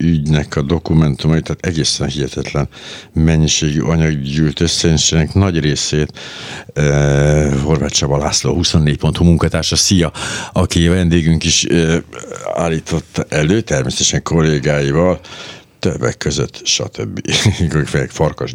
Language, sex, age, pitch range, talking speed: Hungarian, male, 60-79, 75-90 Hz, 100 wpm